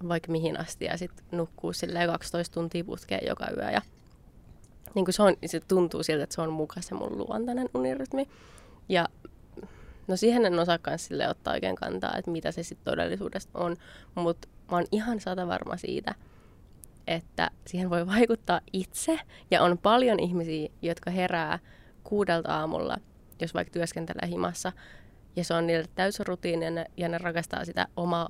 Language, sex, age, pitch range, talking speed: Finnish, female, 20-39, 165-185 Hz, 160 wpm